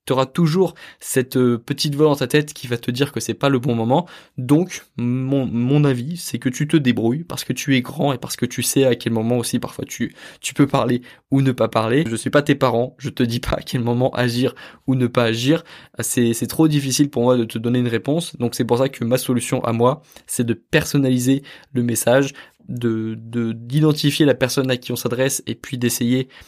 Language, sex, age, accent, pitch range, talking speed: French, male, 20-39, French, 120-145 Hz, 240 wpm